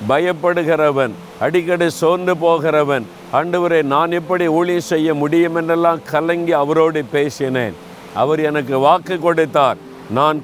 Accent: native